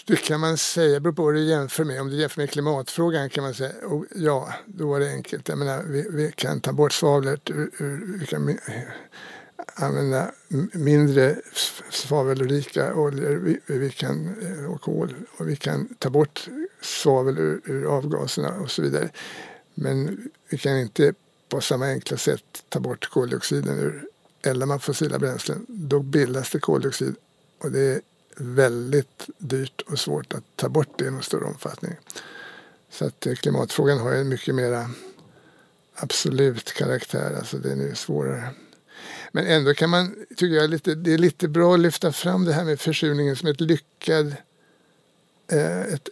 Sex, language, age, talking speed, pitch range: male, Swedish, 60-79, 160 wpm, 135-165 Hz